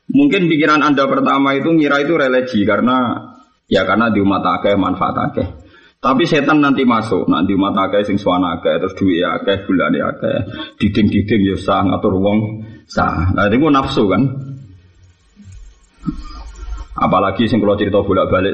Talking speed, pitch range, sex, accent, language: 145 wpm, 100-155 Hz, male, native, Indonesian